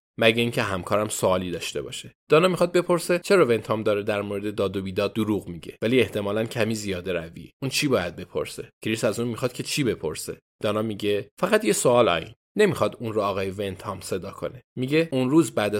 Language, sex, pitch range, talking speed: Persian, male, 100-125 Hz, 195 wpm